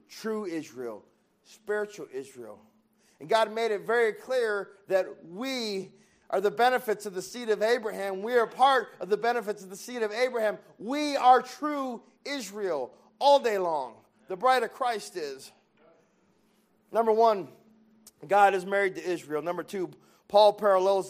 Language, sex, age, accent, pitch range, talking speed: English, male, 40-59, American, 190-225 Hz, 155 wpm